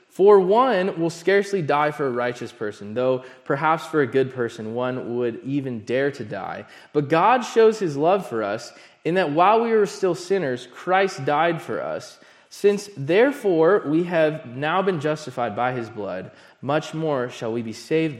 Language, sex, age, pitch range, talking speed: English, male, 20-39, 115-165 Hz, 180 wpm